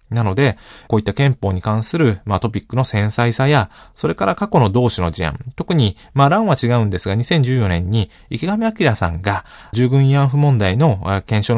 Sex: male